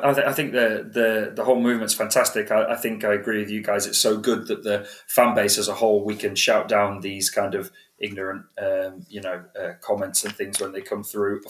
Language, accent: English, British